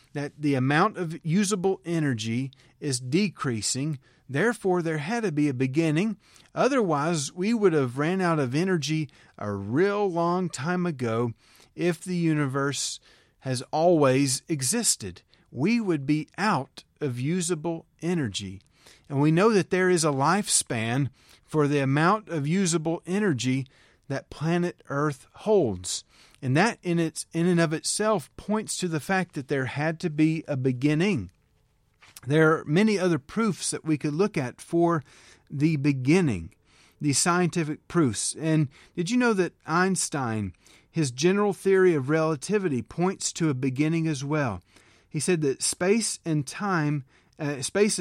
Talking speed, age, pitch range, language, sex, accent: 150 wpm, 40-59, 135-180 Hz, English, male, American